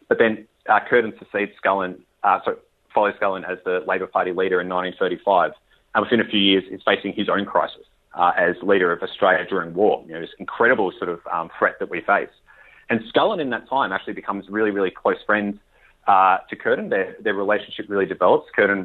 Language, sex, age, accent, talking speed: English, male, 30-49, Australian, 195 wpm